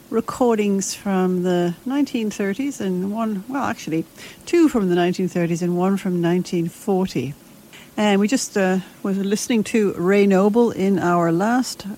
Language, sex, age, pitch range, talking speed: English, female, 60-79, 180-230 Hz, 140 wpm